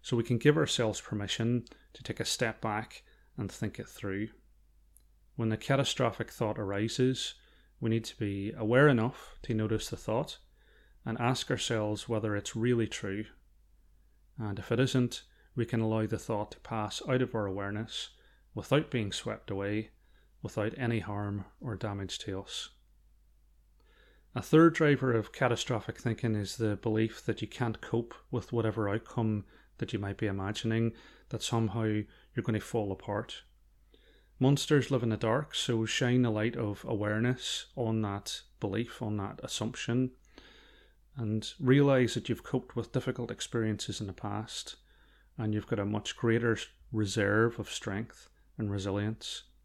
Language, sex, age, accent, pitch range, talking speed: English, male, 30-49, British, 105-120 Hz, 155 wpm